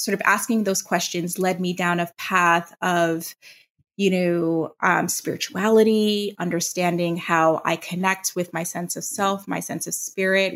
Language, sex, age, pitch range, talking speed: English, female, 20-39, 175-205 Hz, 160 wpm